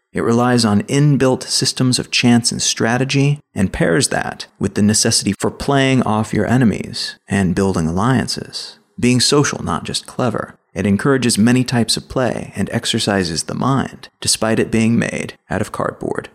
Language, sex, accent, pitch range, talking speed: English, male, American, 100-130 Hz, 165 wpm